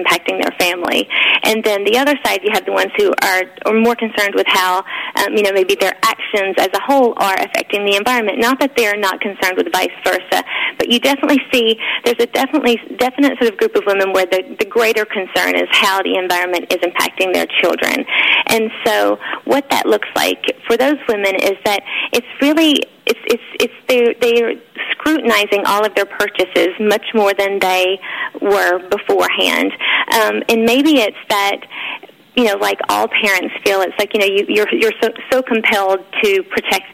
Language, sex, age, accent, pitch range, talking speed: English, female, 30-49, American, 195-250 Hz, 190 wpm